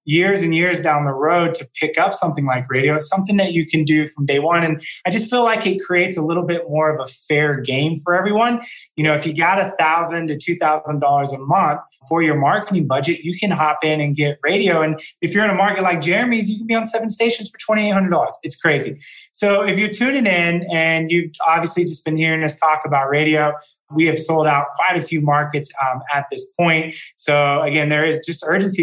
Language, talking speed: English, 240 wpm